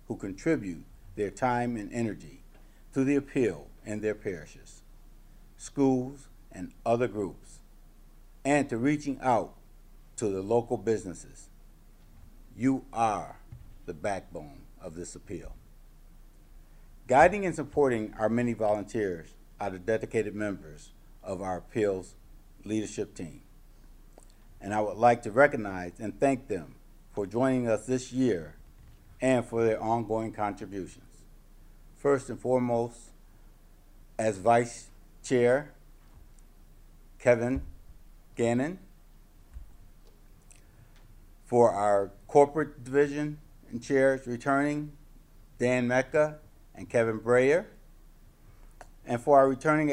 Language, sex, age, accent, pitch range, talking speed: English, male, 60-79, American, 100-130 Hz, 105 wpm